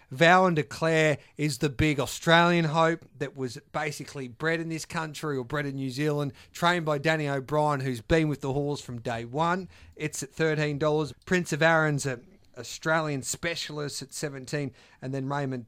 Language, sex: English, male